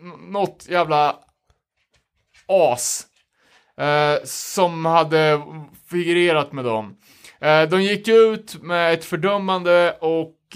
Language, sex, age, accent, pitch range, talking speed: Swedish, male, 30-49, Norwegian, 140-190 Hz, 100 wpm